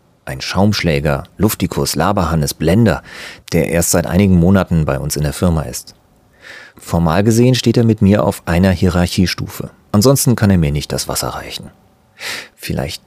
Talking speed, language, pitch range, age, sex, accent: 155 wpm, German, 80-115 Hz, 40-59, male, German